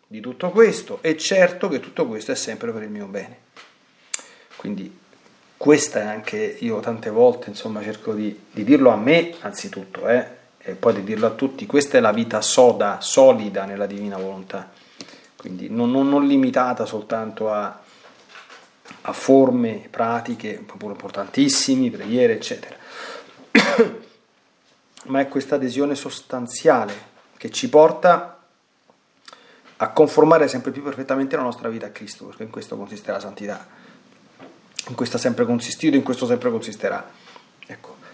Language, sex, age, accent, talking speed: Italian, male, 40-59, native, 150 wpm